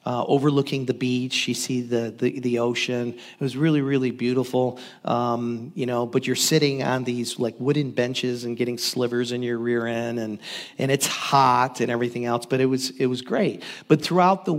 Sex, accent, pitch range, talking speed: male, American, 125-150 Hz, 200 wpm